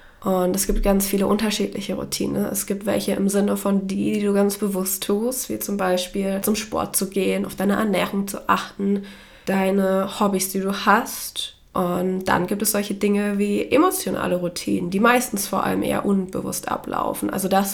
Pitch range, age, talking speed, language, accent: 185-210 Hz, 20-39, 185 wpm, German, German